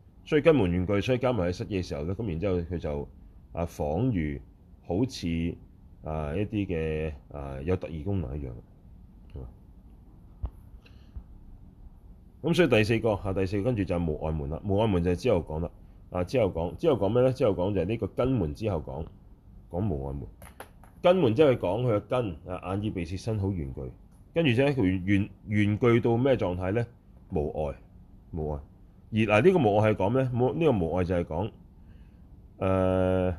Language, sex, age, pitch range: Chinese, male, 30-49, 85-110 Hz